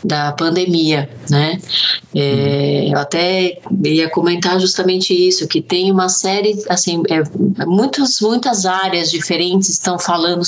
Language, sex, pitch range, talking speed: Portuguese, female, 160-195 Hz, 125 wpm